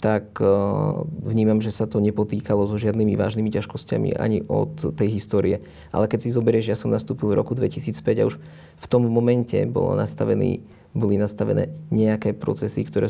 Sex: male